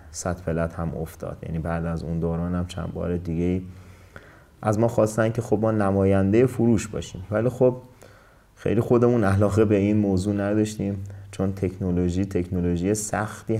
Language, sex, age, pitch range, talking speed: Persian, male, 30-49, 90-100 Hz, 150 wpm